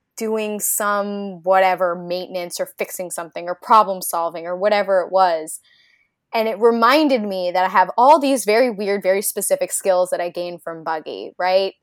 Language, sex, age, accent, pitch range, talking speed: English, female, 10-29, American, 175-225 Hz, 170 wpm